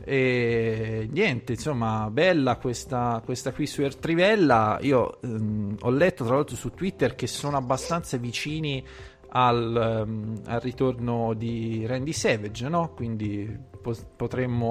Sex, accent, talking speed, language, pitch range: male, native, 130 wpm, Italian, 115-130 Hz